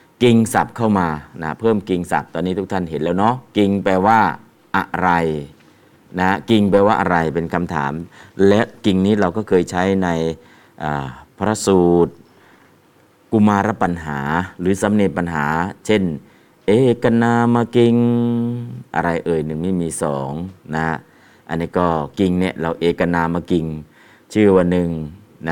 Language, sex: Thai, male